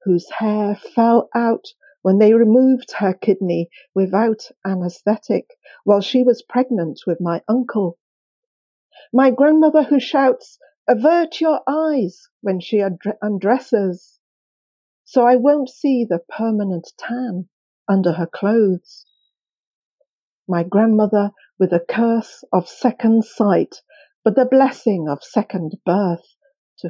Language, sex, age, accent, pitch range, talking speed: English, female, 50-69, British, 185-255 Hz, 120 wpm